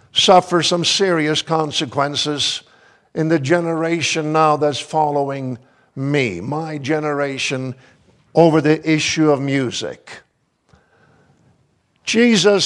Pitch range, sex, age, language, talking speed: 155-225 Hz, male, 50-69, English, 90 wpm